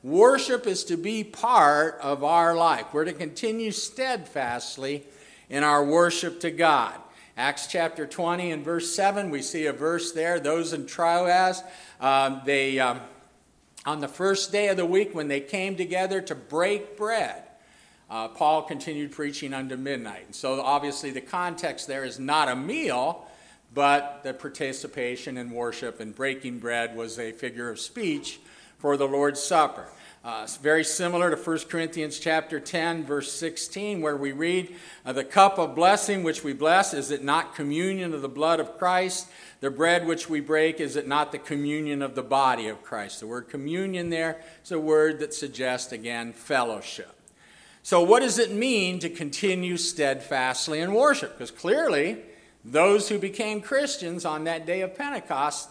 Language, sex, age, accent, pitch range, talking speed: English, male, 50-69, American, 140-180 Hz, 165 wpm